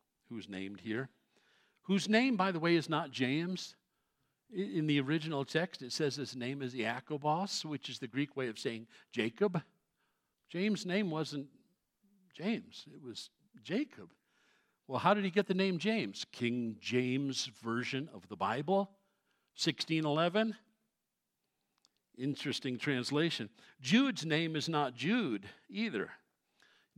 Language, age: English, 60-79